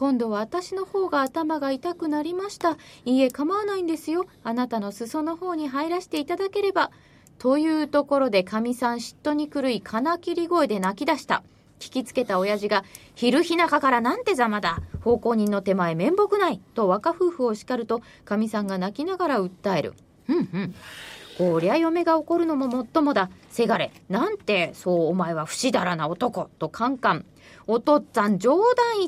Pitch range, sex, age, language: 210-335 Hz, female, 20-39, Japanese